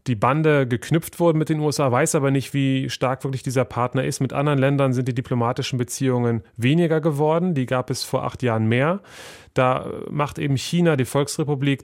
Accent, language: German, German